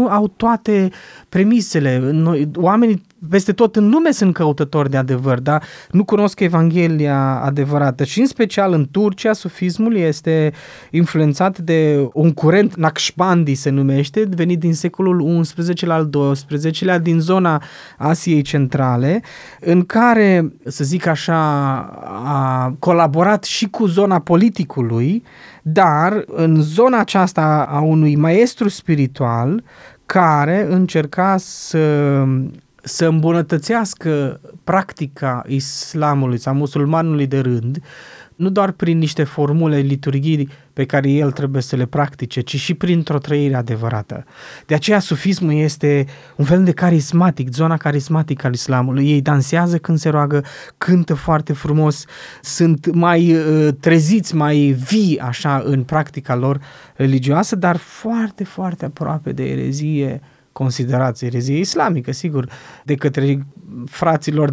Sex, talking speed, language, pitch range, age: male, 125 wpm, Romanian, 140-180 Hz, 20-39